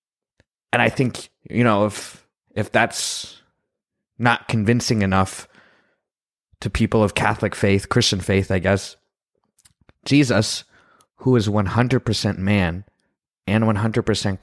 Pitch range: 100-120 Hz